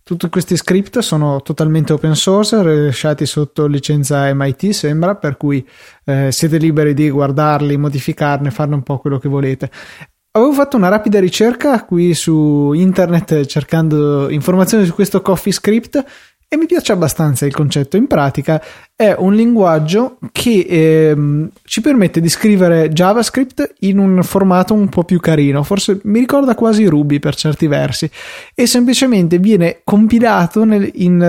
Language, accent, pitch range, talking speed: Italian, native, 150-195 Hz, 150 wpm